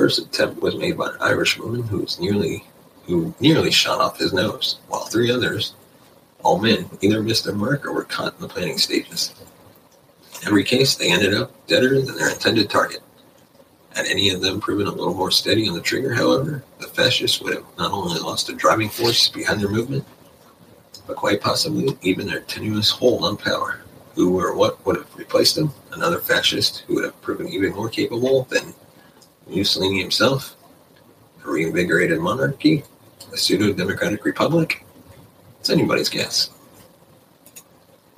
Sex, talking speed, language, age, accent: male, 170 wpm, English, 40-59, American